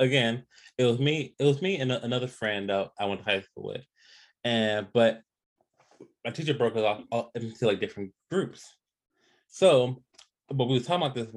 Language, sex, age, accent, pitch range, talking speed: English, male, 20-39, American, 115-180 Hz, 200 wpm